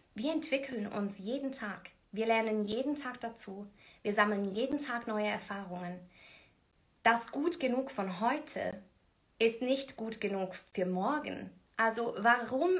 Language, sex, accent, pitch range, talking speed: German, female, German, 205-245 Hz, 135 wpm